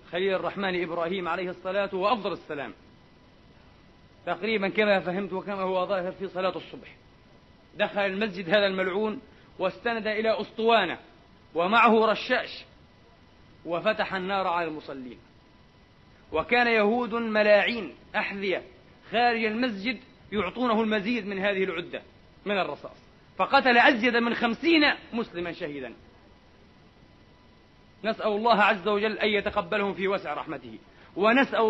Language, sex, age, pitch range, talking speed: Arabic, male, 40-59, 195-250 Hz, 110 wpm